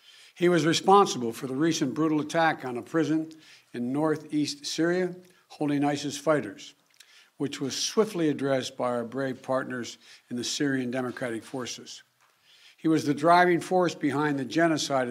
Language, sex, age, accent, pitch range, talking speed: Swedish, male, 60-79, American, 135-160 Hz, 150 wpm